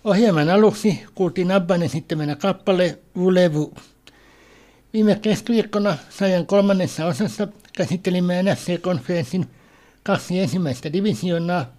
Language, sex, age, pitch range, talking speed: Finnish, male, 60-79, 170-195 Hz, 85 wpm